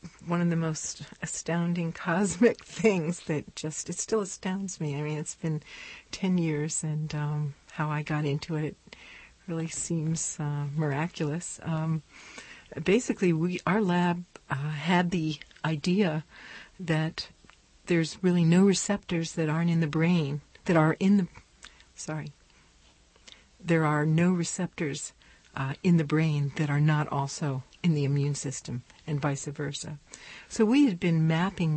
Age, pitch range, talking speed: 60-79, 150-180 Hz, 145 wpm